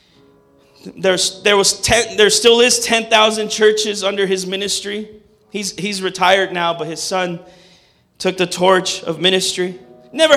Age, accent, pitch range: 30-49, American, 195-270 Hz